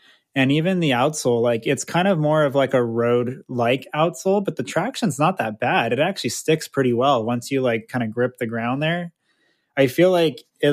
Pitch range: 120-150 Hz